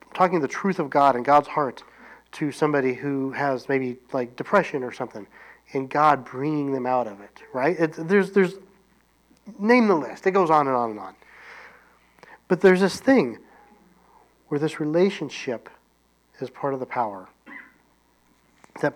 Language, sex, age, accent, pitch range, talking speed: English, male, 40-59, American, 125-180 Hz, 160 wpm